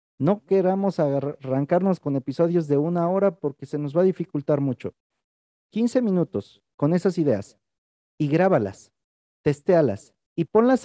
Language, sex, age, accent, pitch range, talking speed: Spanish, male, 40-59, Mexican, 150-200 Hz, 140 wpm